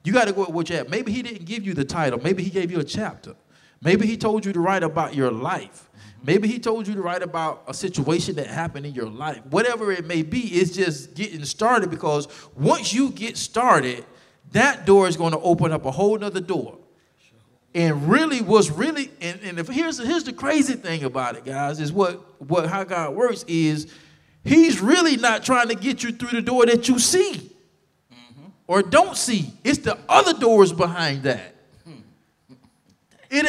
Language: English